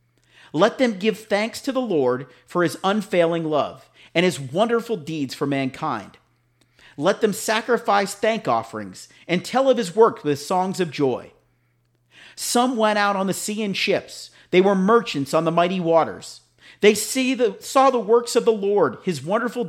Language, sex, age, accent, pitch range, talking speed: English, male, 40-59, American, 145-215 Hz, 165 wpm